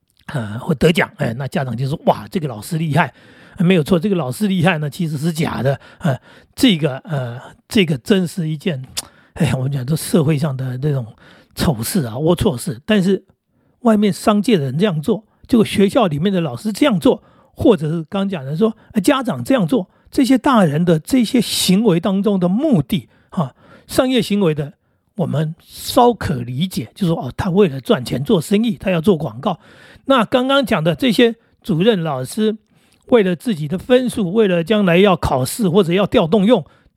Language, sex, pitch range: Chinese, male, 150-215 Hz